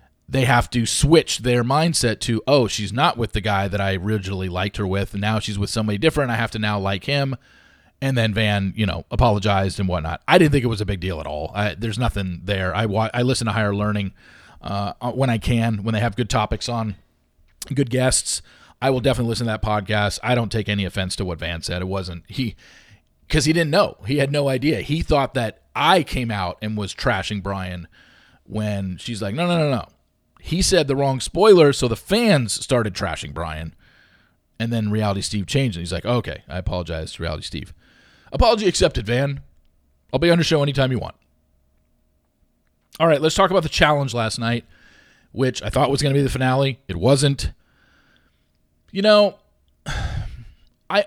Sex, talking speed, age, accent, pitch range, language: male, 205 wpm, 40-59, American, 95-135 Hz, English